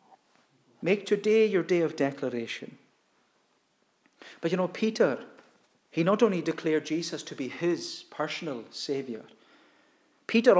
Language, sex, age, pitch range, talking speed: English, male, 40-59, 165-225 Hz, 120 wpm